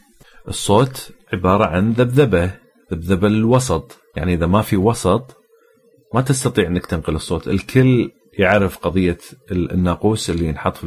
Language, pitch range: Arabic, 85-115 Hz